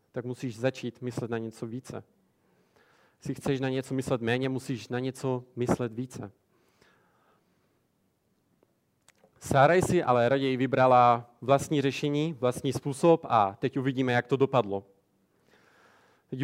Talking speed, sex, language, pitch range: 125 wpm, male, Czech, 120-145 Hz